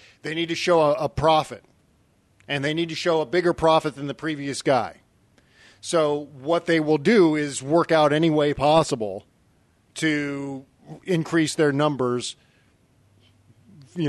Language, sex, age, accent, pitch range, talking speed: English, male, 40-59, American, 130-160 Hz, 150 wpm